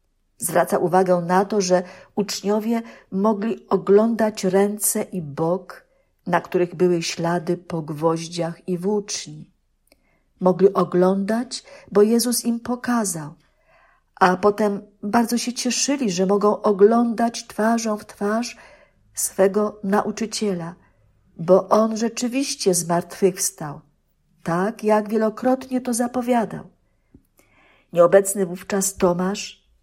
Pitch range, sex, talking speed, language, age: 180-220 Hz, female, 100 wpm, Polish, 50-69